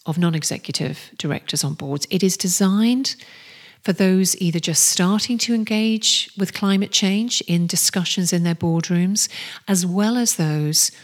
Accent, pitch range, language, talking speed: British, 165-195 Hz, English, 145 wpm